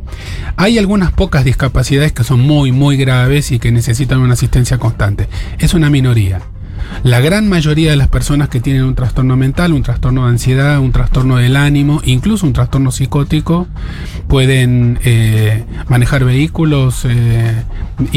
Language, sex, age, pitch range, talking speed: Spanish, male, 30-49, 115-140 Hz, 150 wpm